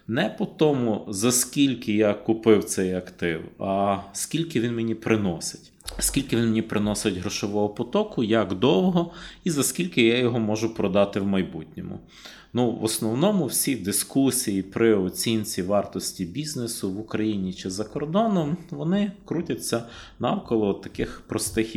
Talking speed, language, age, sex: 140 wpm, Ukrainian, 30-49, male